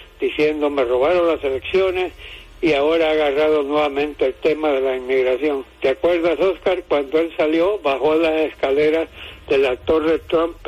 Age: 60-79